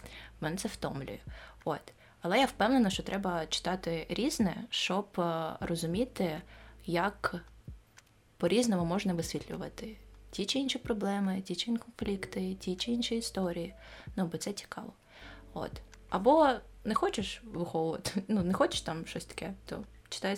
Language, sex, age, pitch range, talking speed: Ukrainian, female, 20-39, 170-220 Hz, 140 wpm